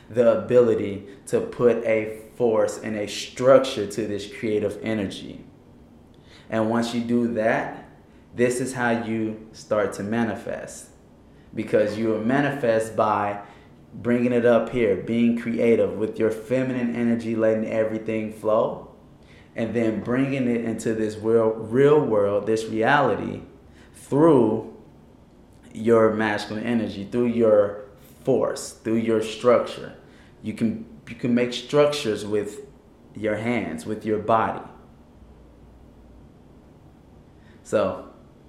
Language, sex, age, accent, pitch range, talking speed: English, male, 20-39, American, 110-120 Hz, 120 wpm